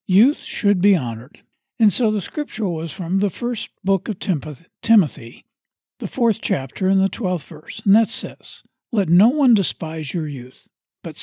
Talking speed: 170 wpm